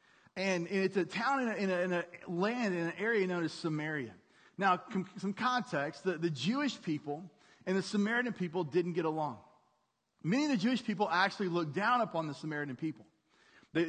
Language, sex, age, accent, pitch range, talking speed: English, male, 30-49, American, 160-210 Hz, 195 wpm